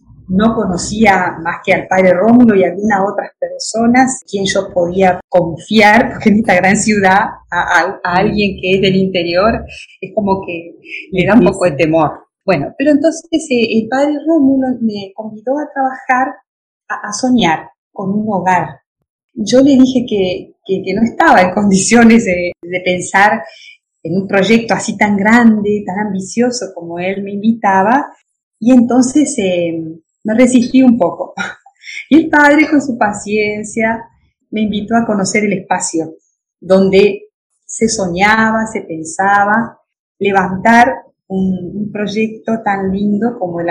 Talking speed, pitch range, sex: 150 wpm, 185-225 Hz, female